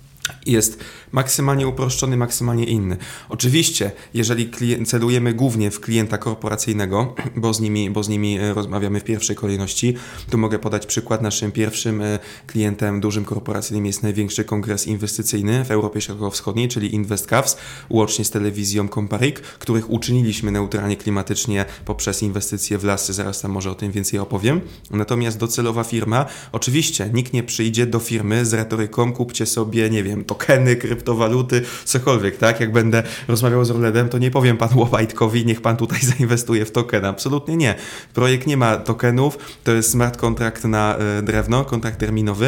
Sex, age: male, 20-39